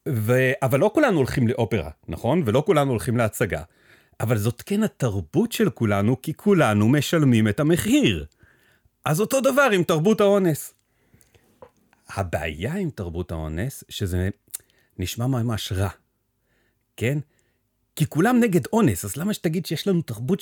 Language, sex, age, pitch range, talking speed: Hebrew, male, 40-59, 110-175 Hz, 140 wpm